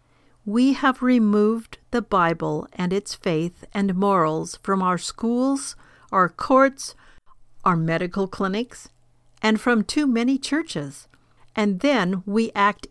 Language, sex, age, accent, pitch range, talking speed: English, female, 50-69, American, 165-225 Hz, 125 wpm